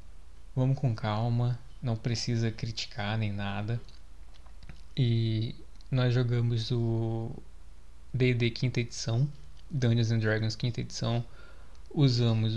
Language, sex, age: Portuguese, male, 20-39